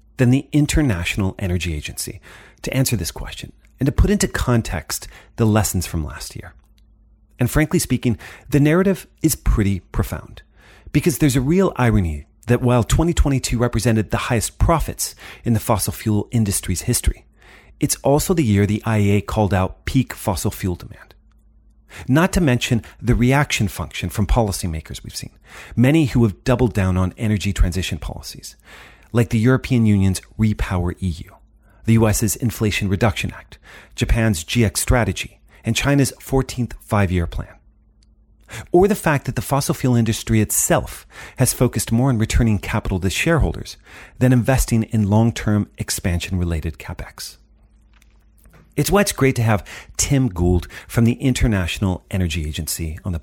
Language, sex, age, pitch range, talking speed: English, male, 40-59, 95-125 Hz, 150 wpm